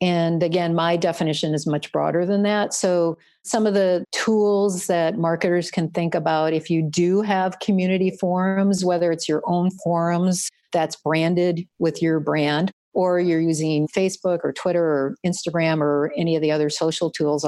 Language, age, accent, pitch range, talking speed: English, 50-69, American, 155-185 Hz, 170 wpm